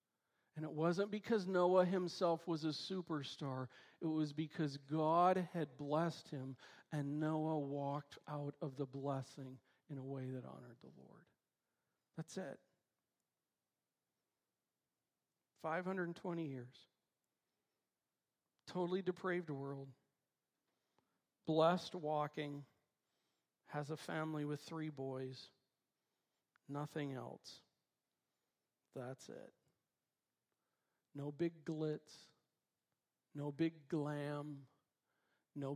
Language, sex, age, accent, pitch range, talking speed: English, male, 50-69, American, 140-170 Hz, 95 wpm